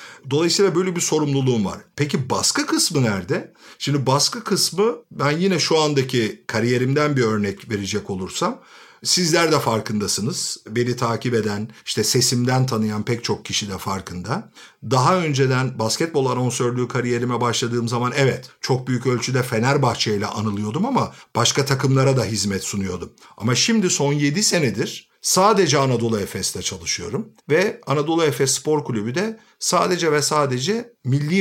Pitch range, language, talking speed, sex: 110-150 Hz, Turkish, 140 wpm, male